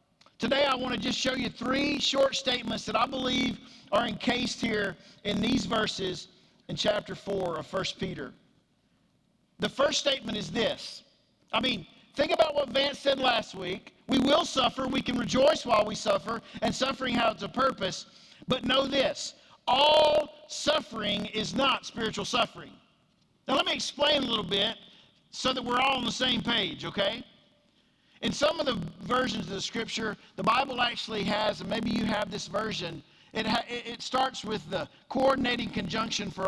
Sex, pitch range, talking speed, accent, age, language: male, 210-270 Hz, 175 wpm, American, 50-69, English